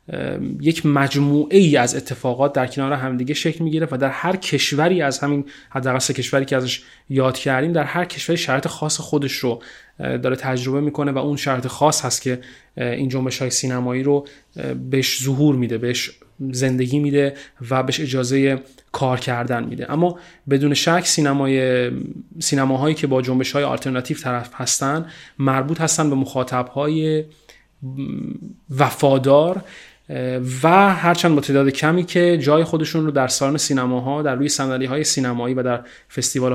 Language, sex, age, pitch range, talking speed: Persian, male, 30-49, 130-150 Hz, 155 wpm